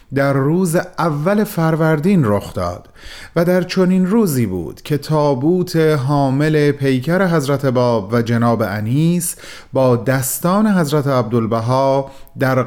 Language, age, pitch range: Persian, 30-49, 120-175 Hz